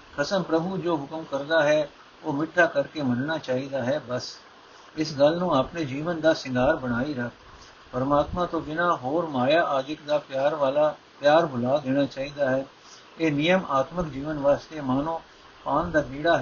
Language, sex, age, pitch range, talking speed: Punjabi, male, 60-79, 140-170 Hz, 165 wpm